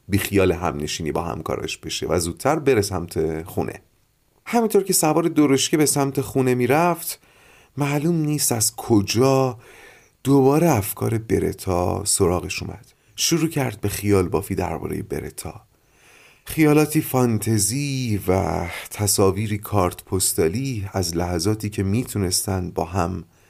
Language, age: Persian, 30-49